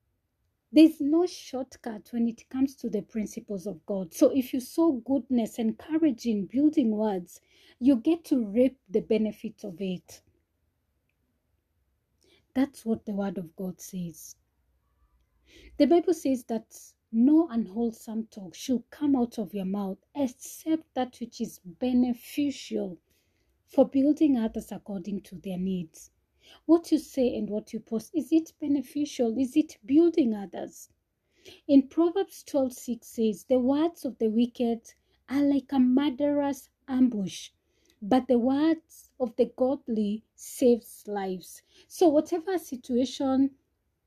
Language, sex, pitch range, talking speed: English, female, 215-285 Hz, 135 wpm